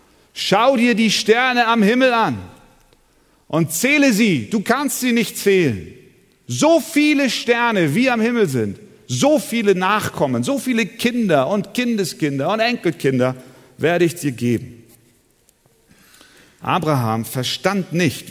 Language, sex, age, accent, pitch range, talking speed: German, male, 40-59, German, 125-185 Hz, 130 wpm